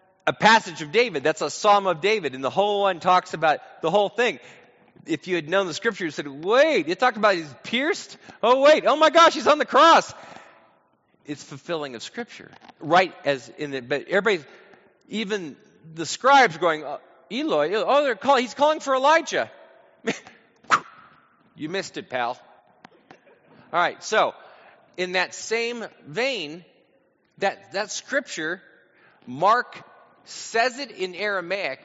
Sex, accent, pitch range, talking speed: male, American, 150-205 Hz, 155 wpm